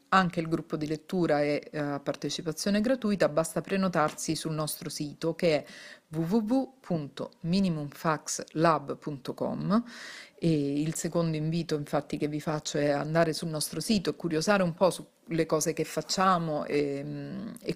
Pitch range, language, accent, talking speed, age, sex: 150-195 Hz, Italian, native, 140 wpm, 40-59, female